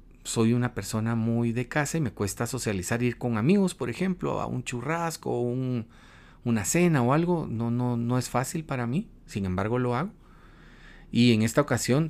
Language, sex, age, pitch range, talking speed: Spanish, male, 40-59, 110-135 Hz, 195 wpm